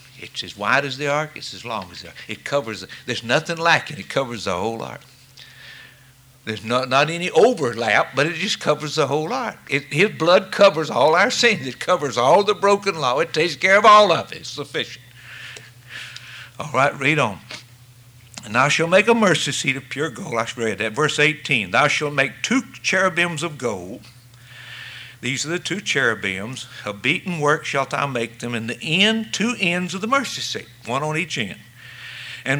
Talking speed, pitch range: 200 wpm, 125-175 Hz